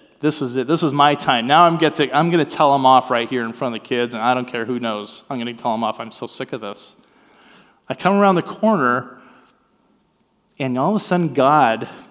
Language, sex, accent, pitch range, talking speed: English, male, American, 140-215 Hz, 245 wpm